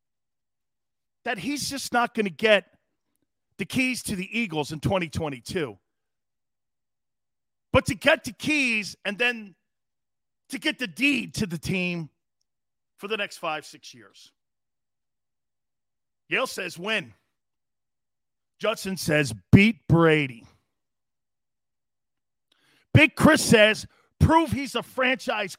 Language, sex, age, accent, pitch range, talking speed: English, male, 40-59, American, 150-240 Hz, 115 wpm